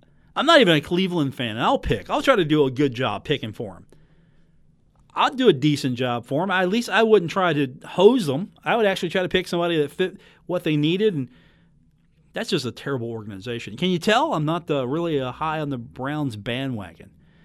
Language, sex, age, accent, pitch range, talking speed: English, male, 40-59, American, 130-175 Hz, 225 wpm